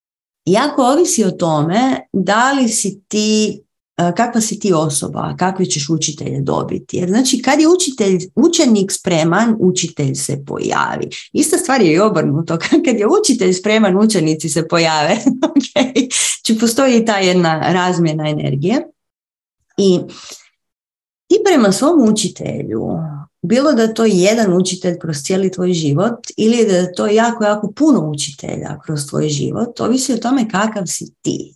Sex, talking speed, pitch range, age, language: female, 145 wpm, 170-230 Hz, 30-49, Croatian